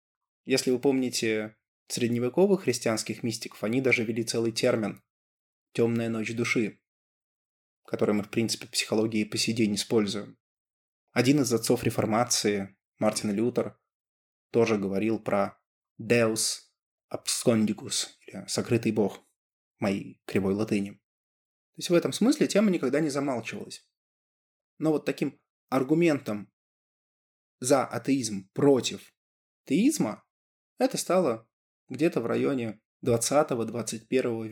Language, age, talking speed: Russian, 20-39, 110 wpm